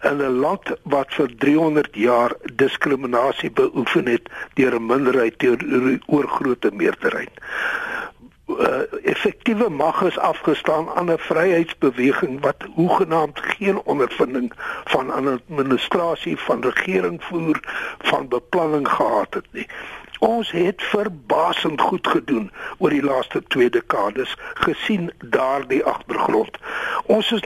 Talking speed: 120 wpm